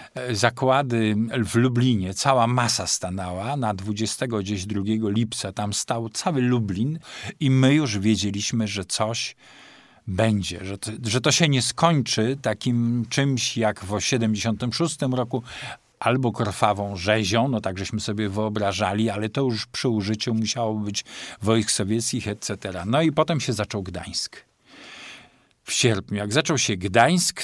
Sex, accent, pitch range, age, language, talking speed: male, native, 105-130 Hz, 50-69, Polish, 135 wpm